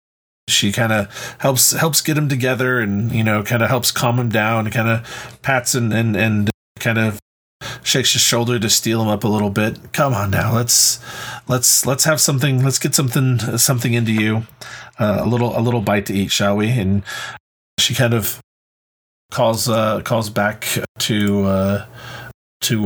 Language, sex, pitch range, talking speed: English, male, 105-125 Hz, 185 wpm